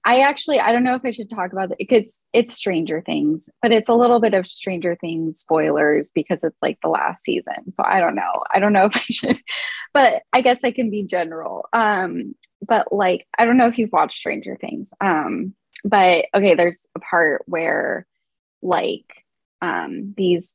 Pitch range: 170-235 Hz